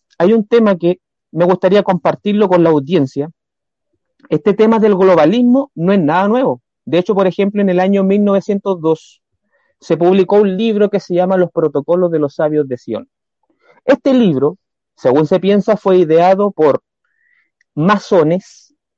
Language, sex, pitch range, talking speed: Spanish, male, 165-220 Hz, 155 wpm